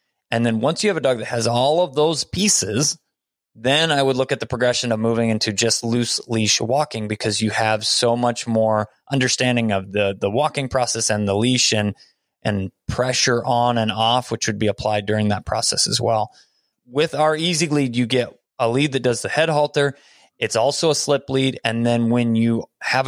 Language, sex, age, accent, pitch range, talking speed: English, male, 20-39, American, 115-140 Hz, 210 wpm